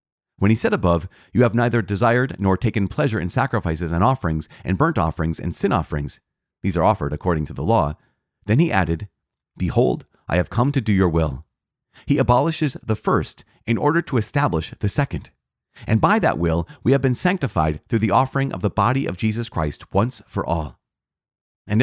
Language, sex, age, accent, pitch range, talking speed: English, male, 40-59, American, 90-130 Hz, 190 wpm